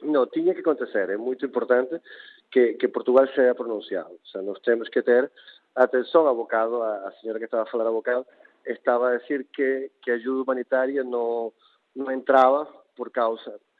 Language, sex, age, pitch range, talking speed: Portuguese, male, 40-59, 120-175 Hz, 185 wpm